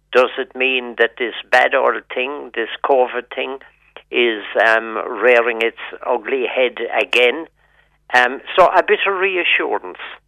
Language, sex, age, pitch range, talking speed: English, male, 60-79, 115-175 Hz, 140 wpm